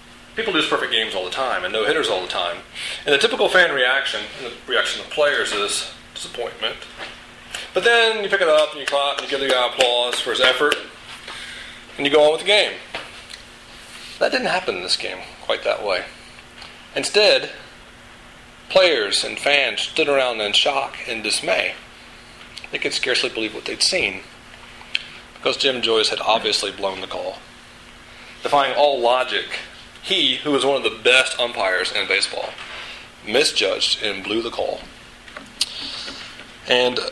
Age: 30-49